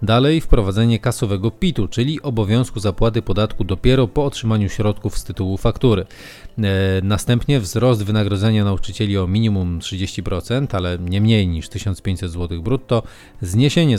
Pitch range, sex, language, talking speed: 100-125 Hz, male, Polish, 135 wpm